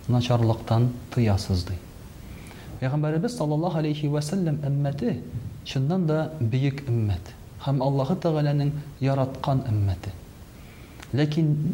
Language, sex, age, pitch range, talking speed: Russian, male, 40-59, 115-150 Hz, 90 wpm